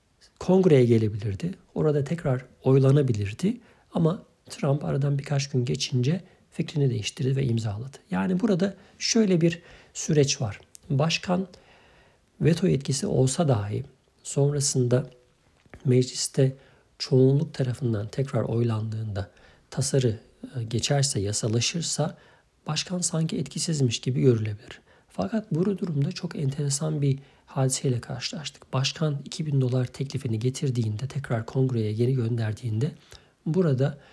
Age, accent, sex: 50-69, native, male